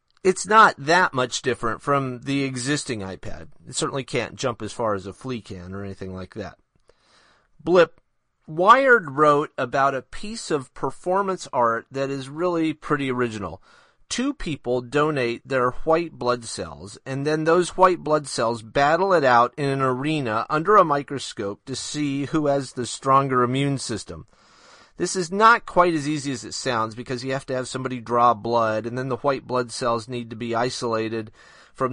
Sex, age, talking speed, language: male, 40-59, 180 wpm, English